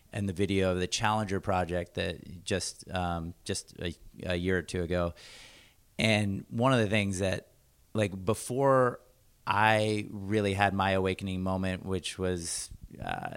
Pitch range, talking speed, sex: 95-110 Hz, 155 wpm, male